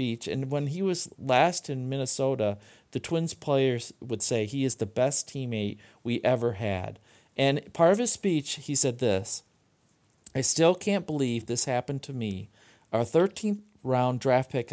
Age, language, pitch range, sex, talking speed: 40-59, English, 110-145 Hz, male, 165 wpm